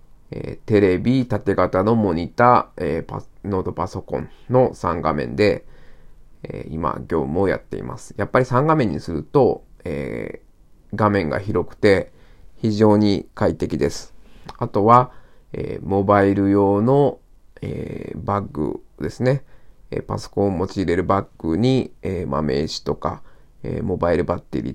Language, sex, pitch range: Japanese, male, 95-110 Hz